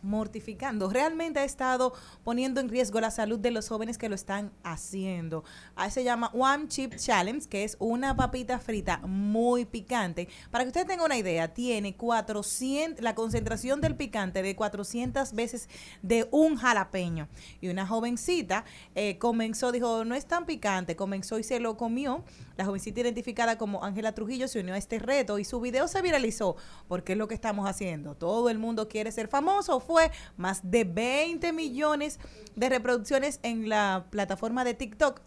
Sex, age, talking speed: female, 30-49, 175 wpm